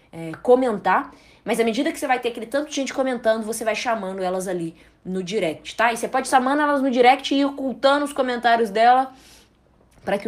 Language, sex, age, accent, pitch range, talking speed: Portuguese, female, 10-29, Brazilian, 190-255 Hz, 215 wpm